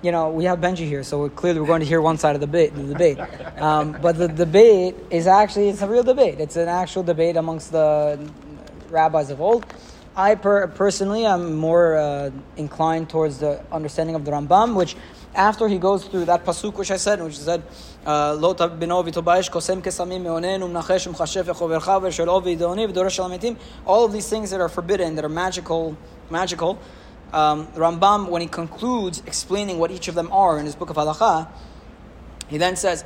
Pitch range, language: 155-190 Hz, English